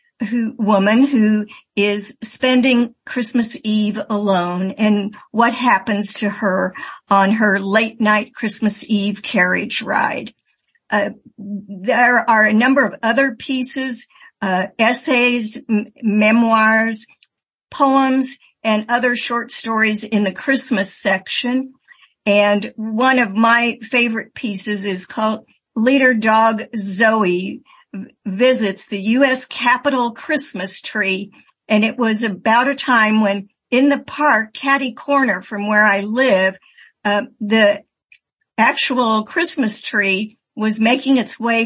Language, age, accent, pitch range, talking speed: English, 50-69, American, 205-255 Hz, 120 wpm